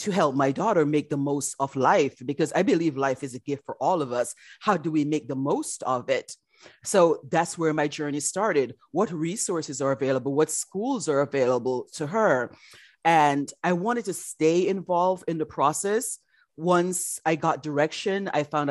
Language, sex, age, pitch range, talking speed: English, female, 30-49, 145-180 Hz, 190 wpm